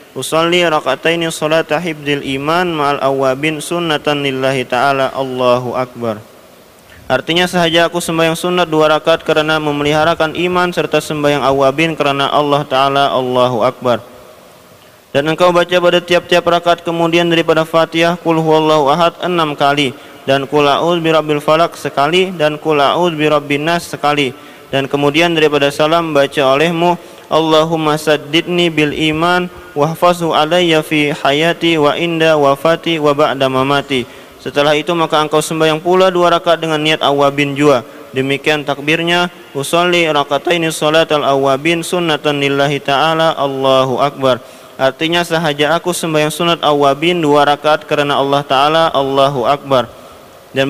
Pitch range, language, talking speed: 140-170 Hz, Malay, 135 wpm